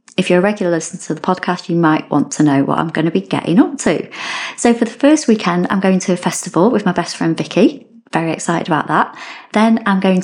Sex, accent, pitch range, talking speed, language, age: female, British, 165-195 Hz, 250 wpm, English, 30-49